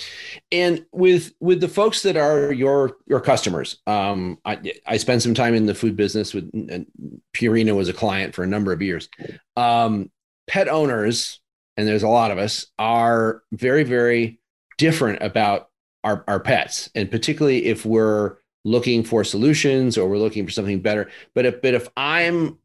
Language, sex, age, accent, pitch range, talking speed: English, male, 40-59, American, 105-135 Hz, 170 wpm